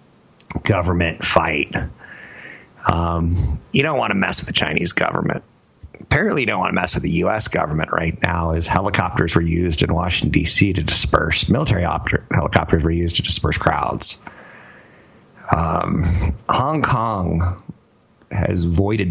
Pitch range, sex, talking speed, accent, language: 85-105 Hz, male, 140 wpm, American, English